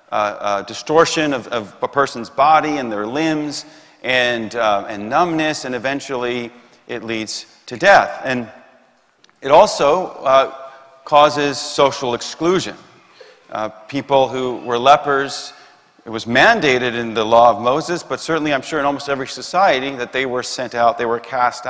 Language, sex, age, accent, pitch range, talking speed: English, male, 40-59, American, 120-155 Hz, 160 wpm